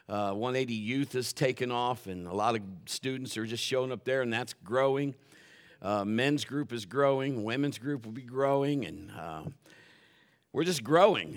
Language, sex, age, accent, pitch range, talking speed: English, male, 50-69, American, 120-150 Hz, 180 wpm